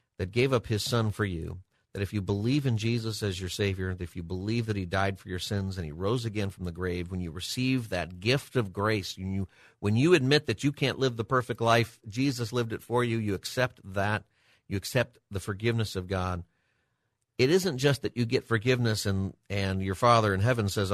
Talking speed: 225 wpm